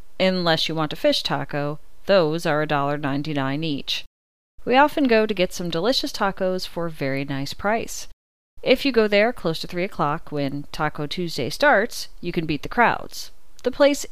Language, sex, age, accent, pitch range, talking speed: English, female, 30-49, American, 145-205 Hz, 180 wpm